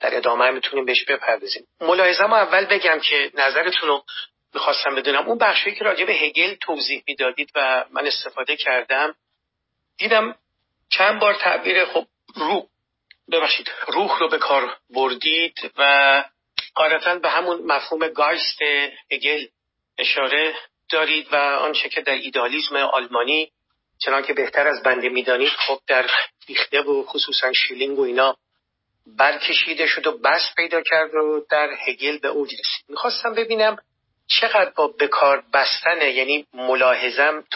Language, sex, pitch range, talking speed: Persian, male, 135-175 Hz, 135 wpm